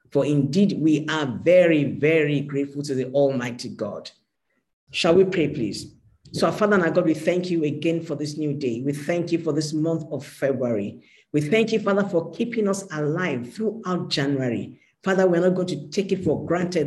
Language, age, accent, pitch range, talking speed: English, 50-69, Nigerian, 140-180 Hz, 200 wpm